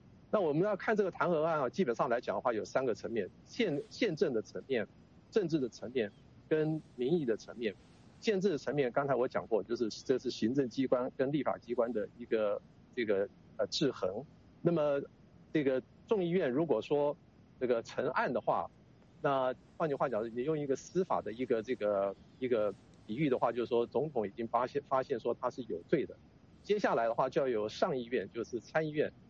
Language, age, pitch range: English, 50-69, 125-195 Hz